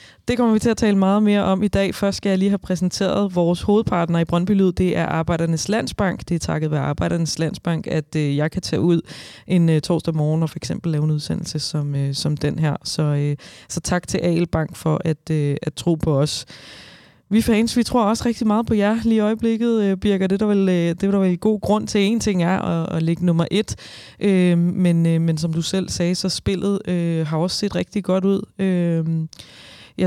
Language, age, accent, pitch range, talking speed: Danish, 20-39, native, 155-200 Hz, 235 wpm